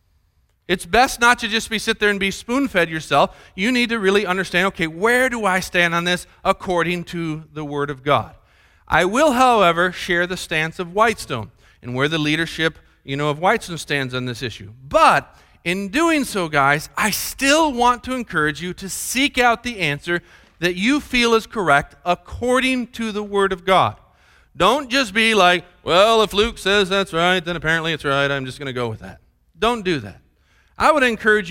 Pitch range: 135-210 Hz